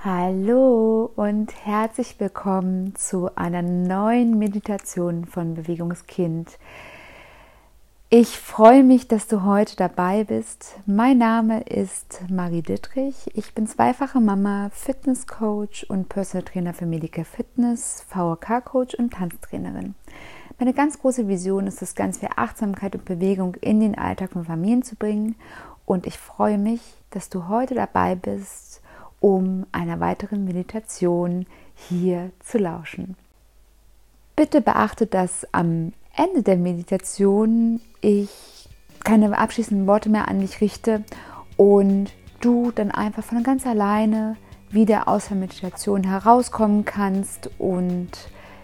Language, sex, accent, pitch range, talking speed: German, female, German, 180-225 Hz, 125 wpm